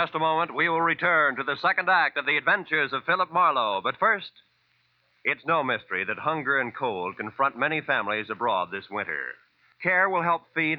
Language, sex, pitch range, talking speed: English, male, 120-170 Hz, 200 wpm